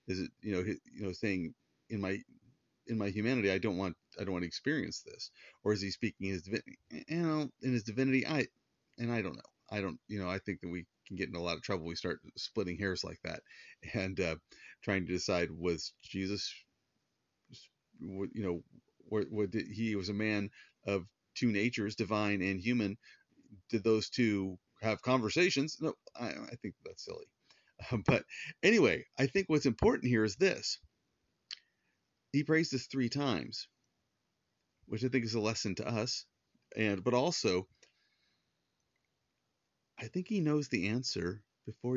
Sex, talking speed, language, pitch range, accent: male, 170 wpm, English, 100-130 Hz, American